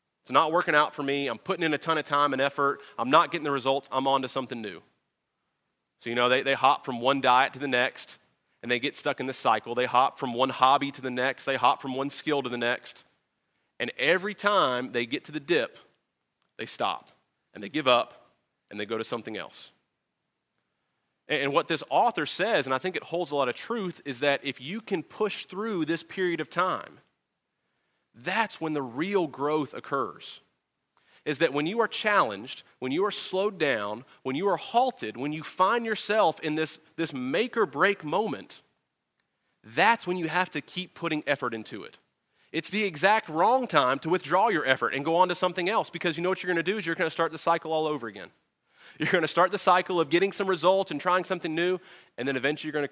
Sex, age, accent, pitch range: male, 30-49, American, 135-180 Hz